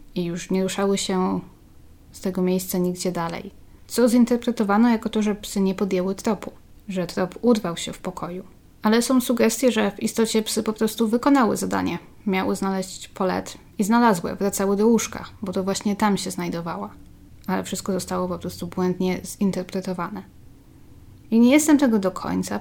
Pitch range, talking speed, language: 185-220 Hz, 165 wpm, Polish